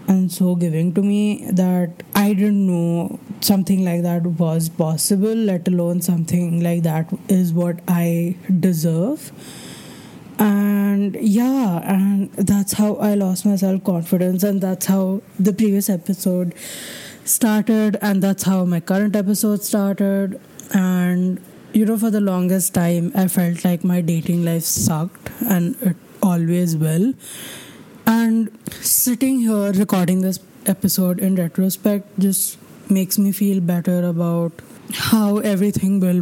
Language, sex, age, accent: English, female, 20-39, Indian